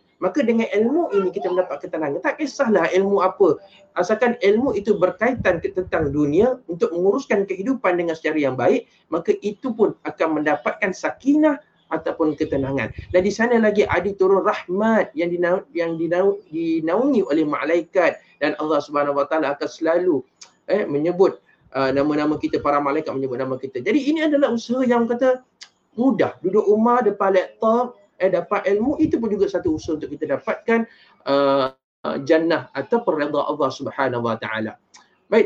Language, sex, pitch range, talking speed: Malay, male, 155-220 Hz, 155 wpm